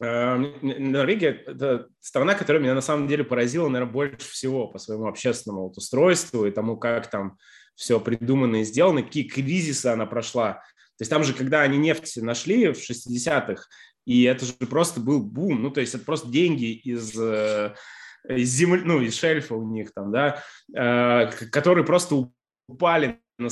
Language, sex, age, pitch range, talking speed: Russian, male, 20-39, 115-145 Hz, 170 wpm